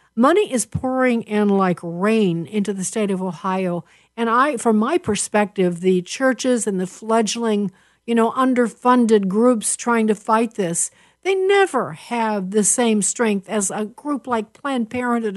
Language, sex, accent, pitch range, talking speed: English, female, American, 195-250 Hz, 160 wpm